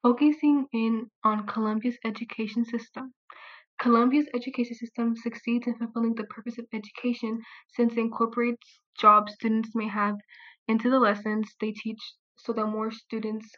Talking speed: 140 wpm